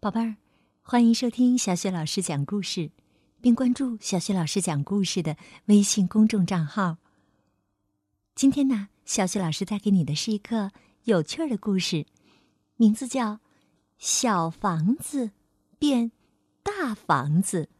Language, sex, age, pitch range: Chinese, female, 50-69, 160-230 Hz